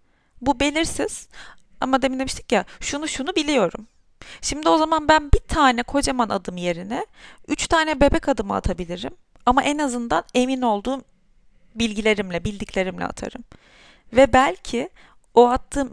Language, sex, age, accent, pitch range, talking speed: Turkish, female, 30-49, native, 220-285 Hz, 130 wpm